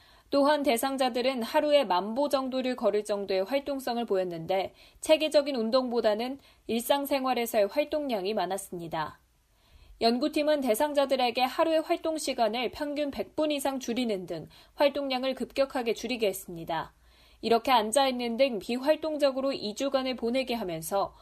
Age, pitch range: 20-39, 205-275 Hz